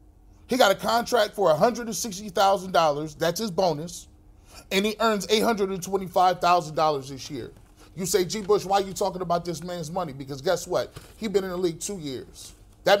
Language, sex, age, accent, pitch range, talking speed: English, male, 30-49, American, 180-245 Hz, 175 wpm